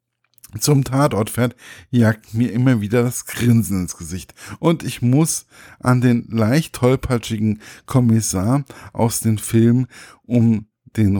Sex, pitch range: male, 105-130 Hz